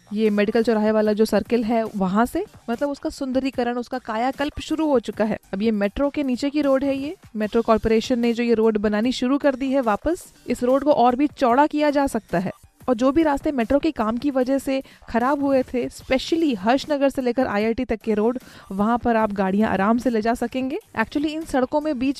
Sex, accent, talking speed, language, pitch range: female, native, 230 wpm, Hindi, 225-275 Hz